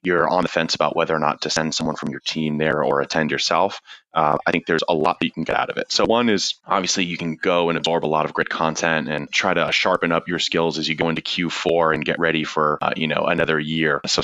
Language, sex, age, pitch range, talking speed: English, male, 30-49, 80-85 Hz, 285 wpm